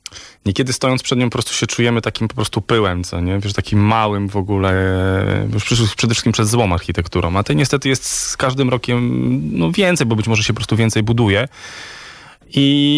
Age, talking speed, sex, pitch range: 20-39, 200 wpm, male, 100-115 Hz